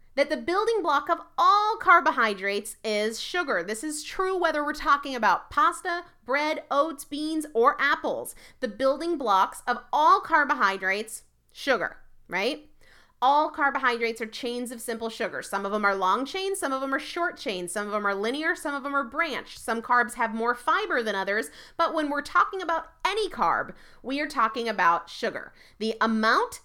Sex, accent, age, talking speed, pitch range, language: female, American, 30-49, 180 wpm, 220-315 Hz, English